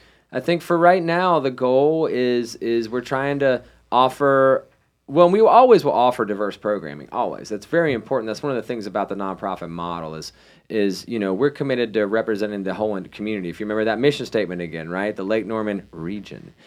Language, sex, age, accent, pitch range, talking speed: English, male, 30-49, American, 100-135 Hz, 205 wpm